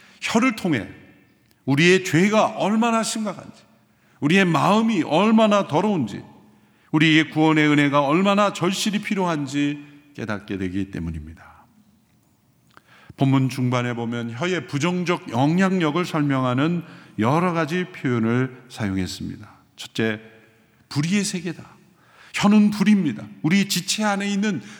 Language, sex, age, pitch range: Korean, male, 50-69, 130-190 Hz